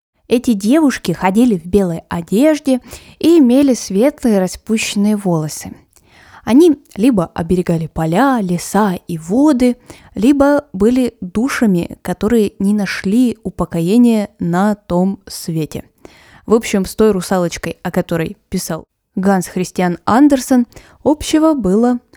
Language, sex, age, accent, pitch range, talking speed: Russian, female, 20-39, native, 180-235 Hz, 110 wpm